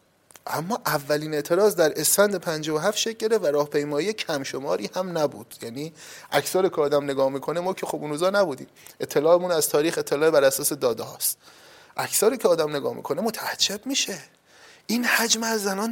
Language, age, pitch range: Persian, 30-49, 140-210 Hz